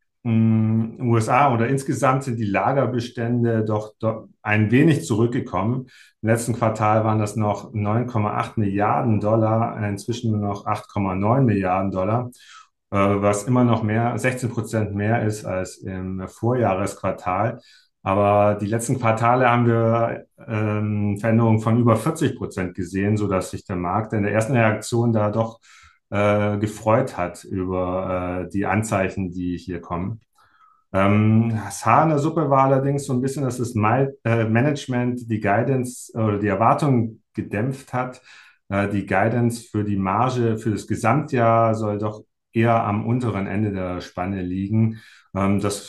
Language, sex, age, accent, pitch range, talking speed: German, male, 40-59, German, 100-120 Hz, 140 wpm